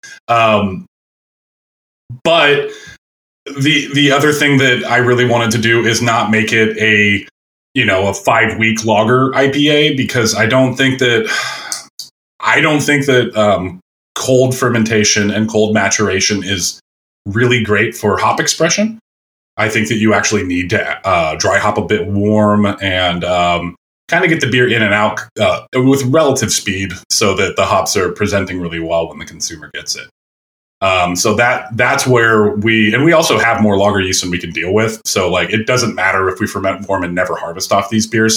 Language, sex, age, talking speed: English, male, 30-49, 185 wpm